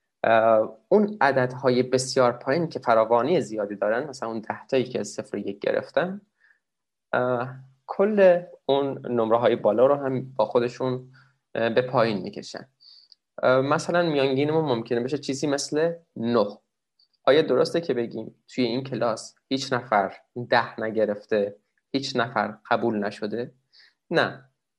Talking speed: 130 wpm